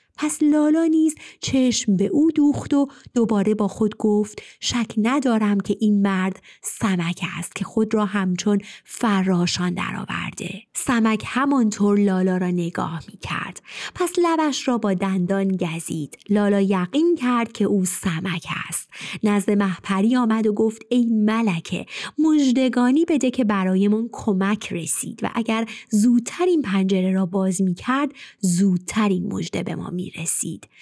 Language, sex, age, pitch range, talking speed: Persian, female, 30-49, 190-255 Hz, 140 wpm